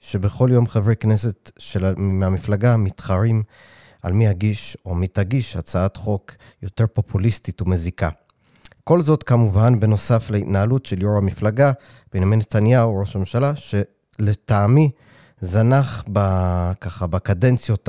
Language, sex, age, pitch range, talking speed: Hebrew, male, 30-49, 95-115 Hz, 115 wpm